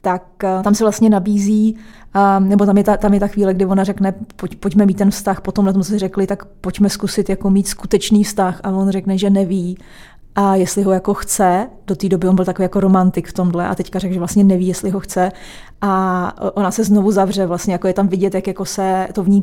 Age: 20-39